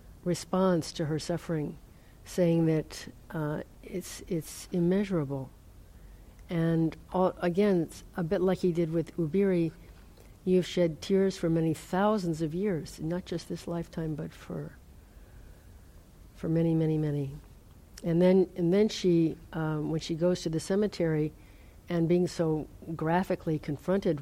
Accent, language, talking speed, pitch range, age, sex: American, English, 145 wpm, 115-170 Hz, 60-79, female